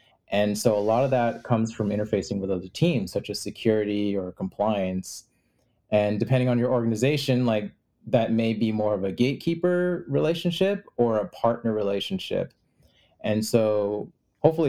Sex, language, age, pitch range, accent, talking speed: male, English, 20-39, 105-130 Hz, American, 155 wpm